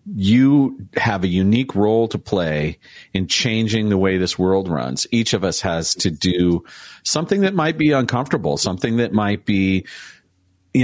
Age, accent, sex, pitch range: 40-59, American, male, 95-130 Hz